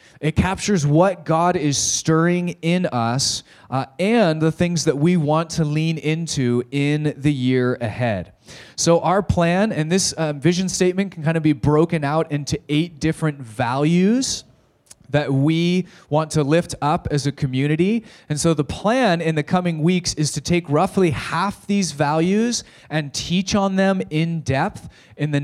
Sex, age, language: male, 20-39, English